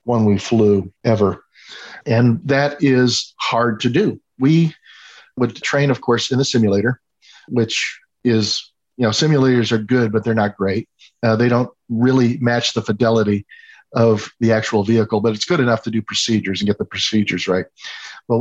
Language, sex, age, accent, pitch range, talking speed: English, male, 50-69, American, 110-125 Hz, 175 wpm